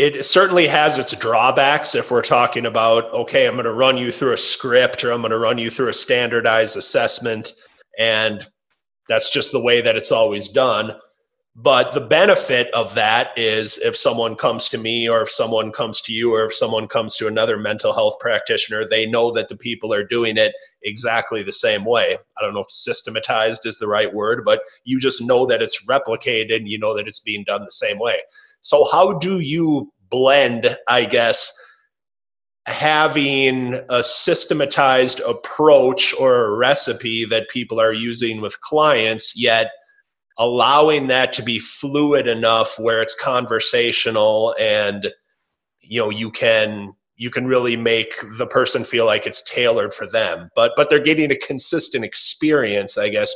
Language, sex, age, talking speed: English, male, 30-49, 175 wpm